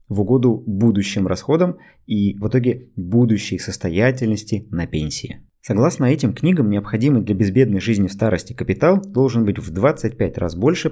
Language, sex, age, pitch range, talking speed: Russian, male, 20-39, 100-130 Hz, 150 wpm